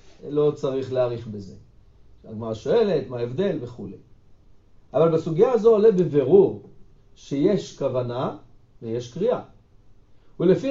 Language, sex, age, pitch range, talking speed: Hebrew, male, 60-79, 120-180 Hz, 105 wpm